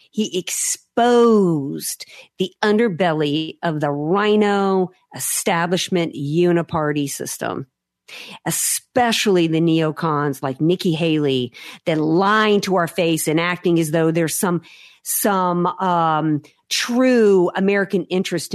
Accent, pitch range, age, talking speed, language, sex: American, 155-190 Hz, 50-69, 105 wpm, English, female